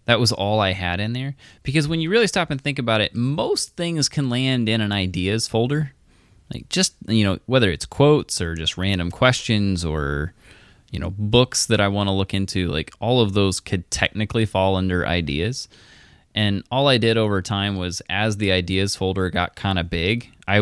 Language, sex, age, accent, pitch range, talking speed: English, male, 20-39, American, 90-115 Hz, 205 wpm